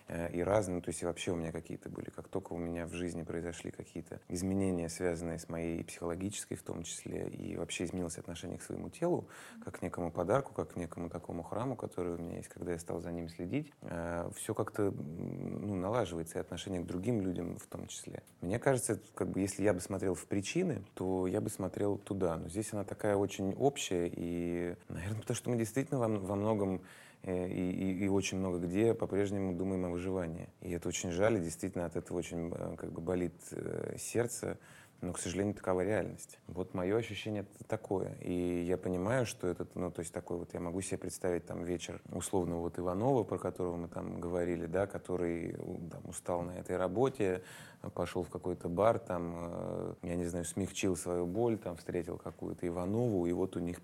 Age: 30-49